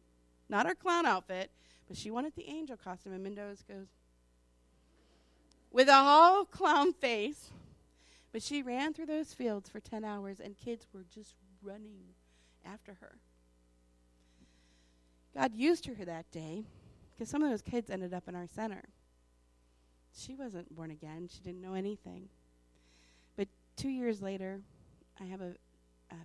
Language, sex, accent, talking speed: English, female, American, 150 wpm